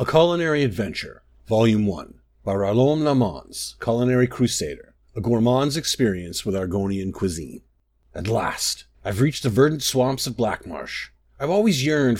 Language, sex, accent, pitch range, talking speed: English, male, American, 100-150 Hz, 140 wpm